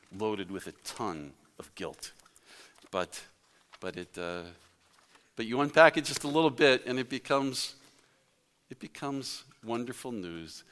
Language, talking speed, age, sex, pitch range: English, 140 wpm, 50-69, male, 95-140 Hz